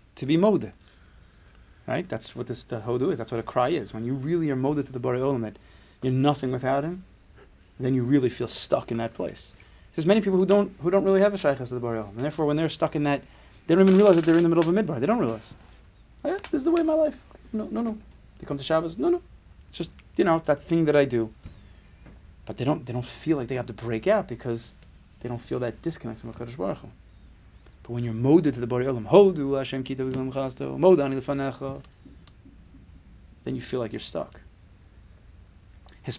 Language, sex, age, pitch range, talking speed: English, male, 30-49, 105-145 Hz, 225 wpm